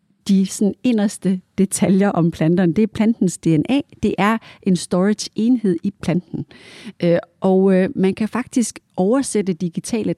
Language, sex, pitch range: Danish, female, 180-230 Hz